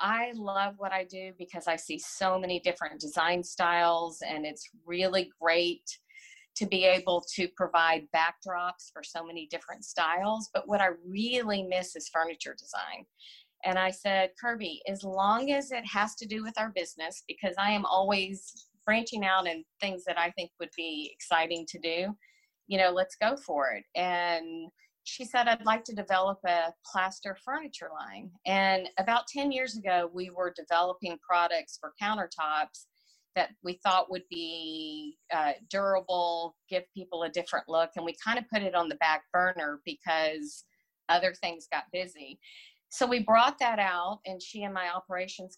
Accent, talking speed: American, 170 wpm